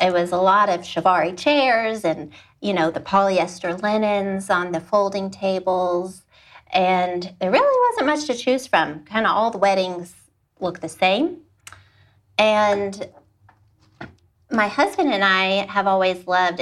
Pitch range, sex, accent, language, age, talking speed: 175-200 Hz, female, American, English, 30-49, 150 wpm